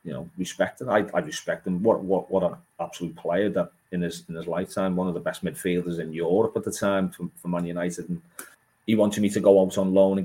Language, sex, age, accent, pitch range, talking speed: English, male, 30-49, British, 90-100 Hz, 245 wpm